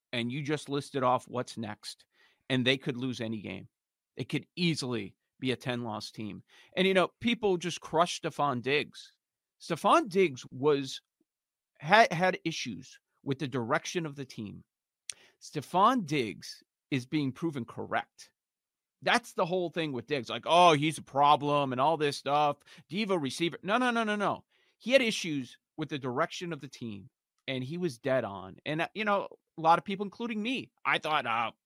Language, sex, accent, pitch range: English, male, American, 125-170 Hz